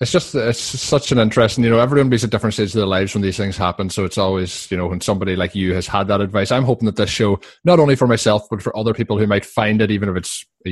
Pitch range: 95-120 Hz